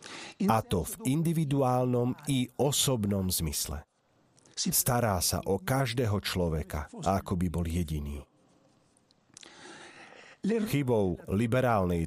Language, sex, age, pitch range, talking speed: Slovak, male, 40-59, 90-135 Hz, 90 wpm